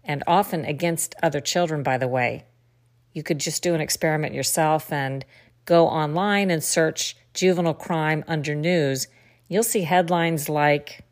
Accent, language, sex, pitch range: American, English, female, 145-180 Hz